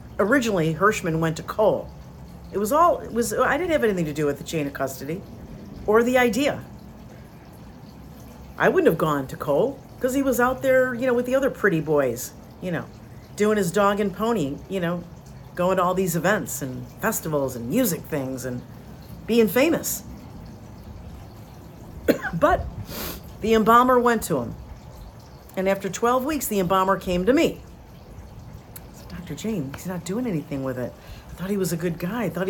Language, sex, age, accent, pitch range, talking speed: English, female, 50-69, American, 150-230 Hz, 175 wpm